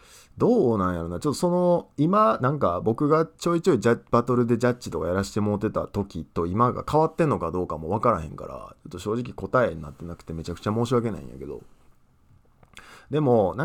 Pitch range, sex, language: 90-145 Hz, male, Japanese